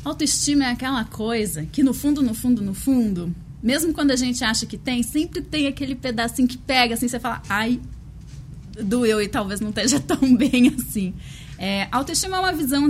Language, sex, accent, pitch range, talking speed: Portuguese, female, Brazilian, 210-275 Hz, 190 wpm